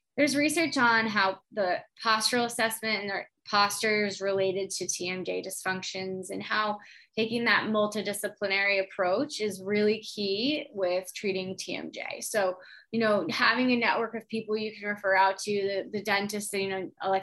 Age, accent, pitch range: 20-39, American, 190-220 Hz